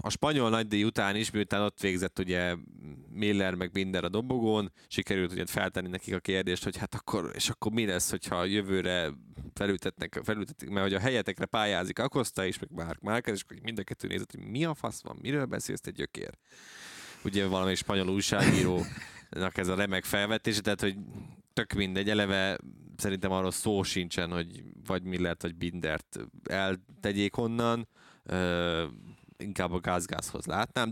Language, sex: Hungarian, male